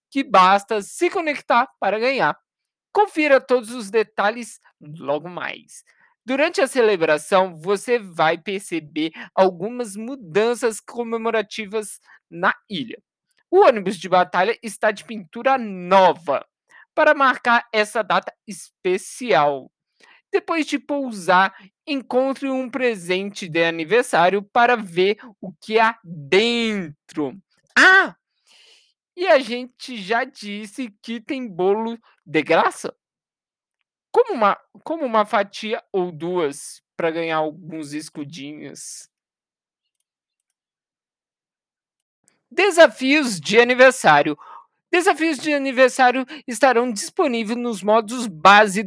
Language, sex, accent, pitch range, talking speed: Portuguese, male, Brazilian, 190-260 Hz, 100 wpm